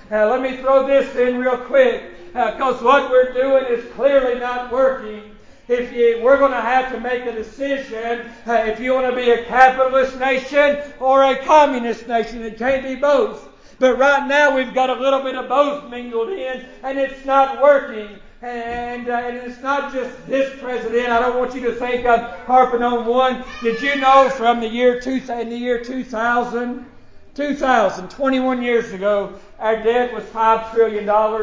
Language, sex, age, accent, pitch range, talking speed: English, male, 60-79, American, 235-265 Hz, 190 wpm